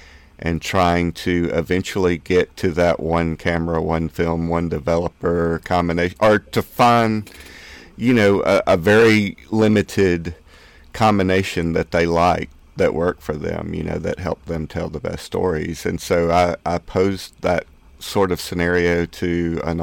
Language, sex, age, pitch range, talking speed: English, male, 40-59, 80-95 Hz, 155 wpm